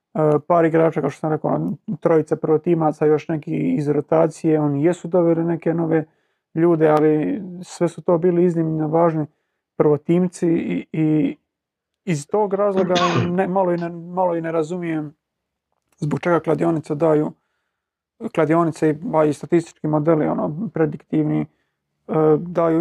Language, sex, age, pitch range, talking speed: Croatian, male, 30-49, 155-170 Hz, 130 wpm